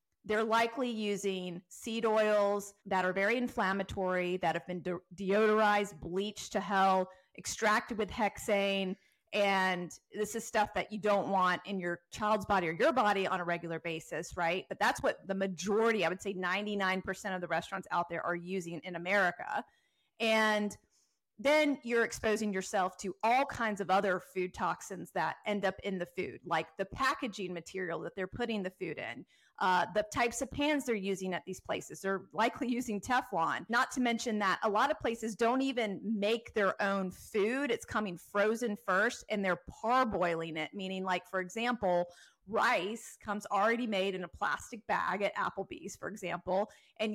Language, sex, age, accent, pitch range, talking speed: English, female, 30-49, American, 185-225 Hz, 175 wpm